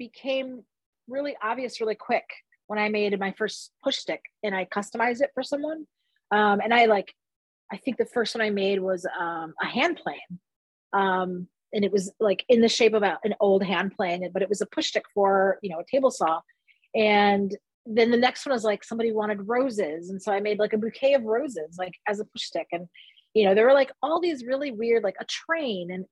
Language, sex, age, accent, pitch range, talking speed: English, female, 30-49, American, 190-235 Hz, 225 wpm